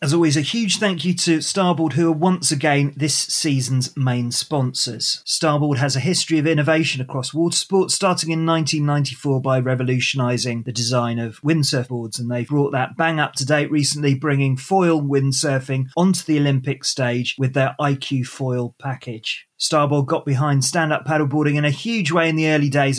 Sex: male